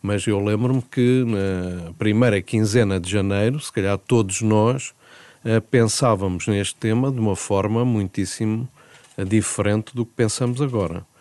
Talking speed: 140 wpm